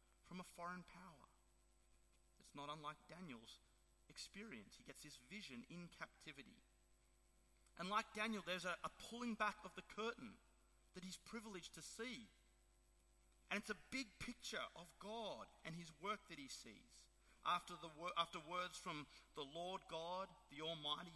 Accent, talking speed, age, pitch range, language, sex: Australian, 155 wpm, 40-59, 160-210 Hz, English, male